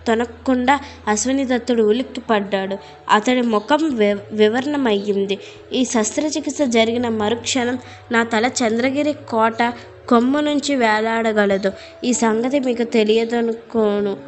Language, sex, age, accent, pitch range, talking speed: Telugu, female, 20-39, native, 210-255 Hz, 90 wpm